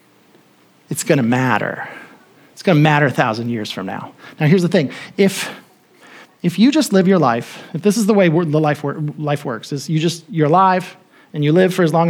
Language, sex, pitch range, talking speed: English, male, 155-235 Hz, 215 wpm